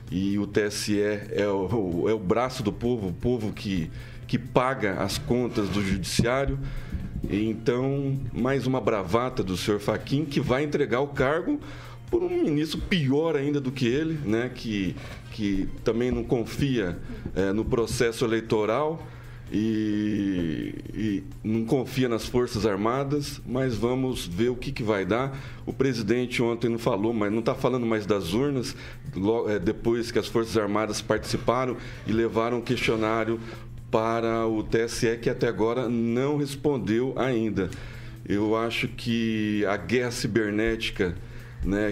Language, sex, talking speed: Portuguese, male, 145 wpm